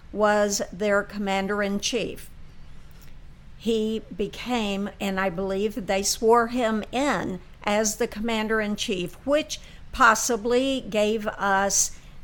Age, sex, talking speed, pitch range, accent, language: 50-69, female, 95 wpm, 200-240 Hz, American, English